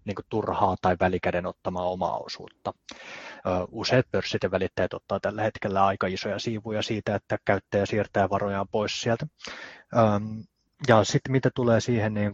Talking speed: 145 wpm